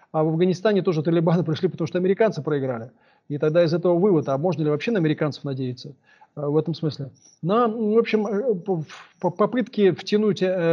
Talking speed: 160 wpm